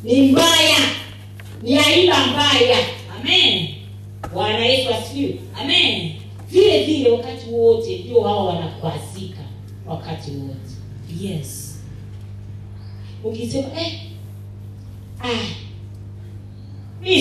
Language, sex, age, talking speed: Swahili, female, 30-49, 80 wpm